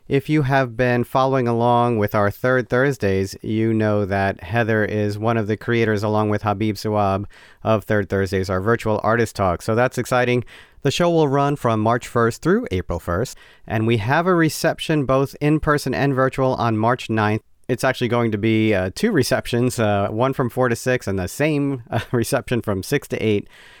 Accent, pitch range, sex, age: American, 105-130 Hz, male, 40-59